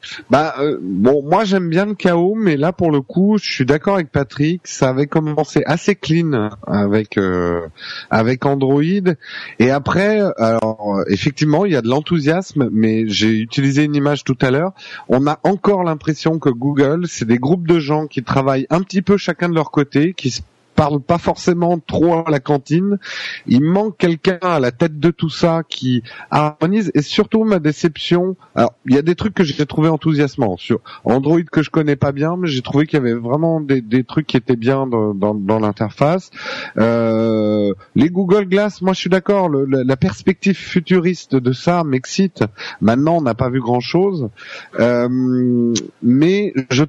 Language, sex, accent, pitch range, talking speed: French, male, French, 130-175 Hz, 185 wpm